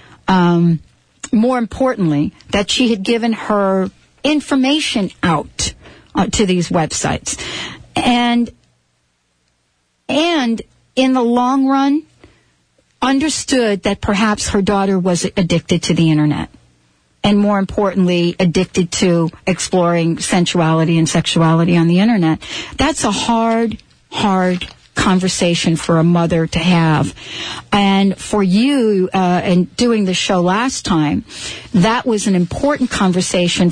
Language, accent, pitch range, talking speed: English, American, 170-230 Hz, 120 wpm